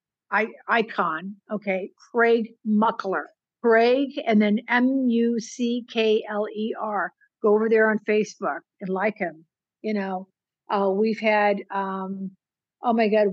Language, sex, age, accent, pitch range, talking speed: English, female, 60-79, American, 195-215 Hz, 115 wpm